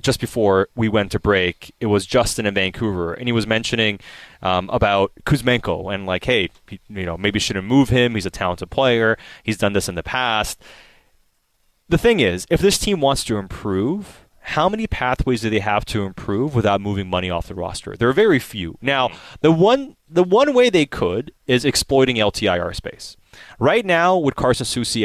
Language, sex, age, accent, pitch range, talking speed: English, male, 30-49, American, 100-135 Hz, 190 wpm